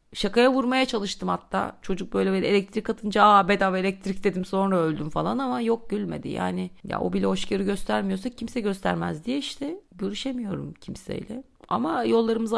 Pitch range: 170-235 Hz